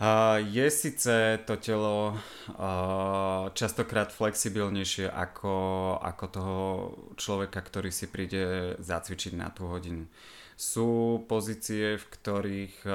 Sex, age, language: male, 20-39, Slovak